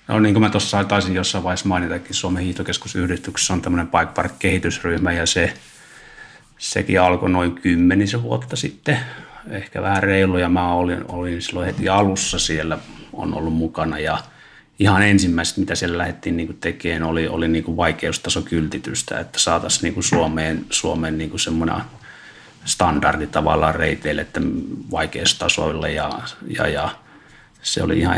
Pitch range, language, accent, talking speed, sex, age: 85-100 Hz, Finnish, native, 145 wpm, male, 30-49